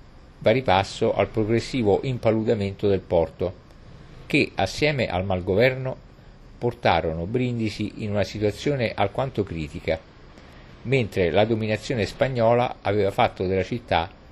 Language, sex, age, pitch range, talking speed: Italian, male, 50-69, 90-120 Hz, 110 wpm